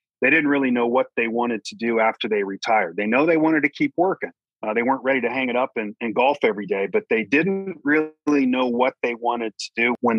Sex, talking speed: male, 255 wpm